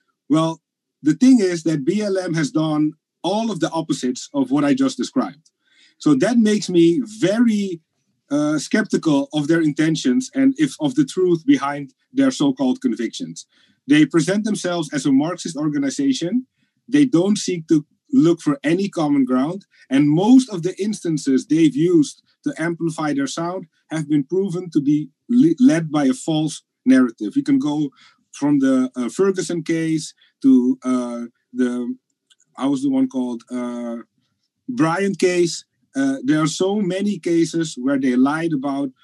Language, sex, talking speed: Dutch, male, 160 wpm